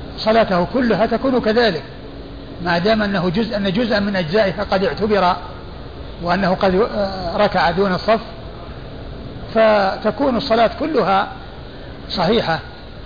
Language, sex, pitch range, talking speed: Arabic, male, 185-220 Hz, 95 wpm